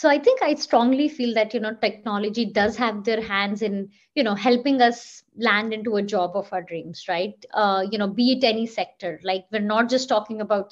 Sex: female